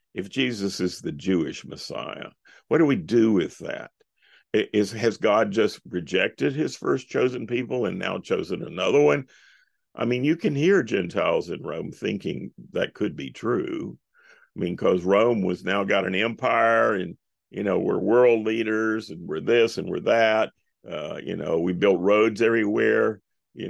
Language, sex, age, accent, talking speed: English, male, 50-69, American, 170 wpm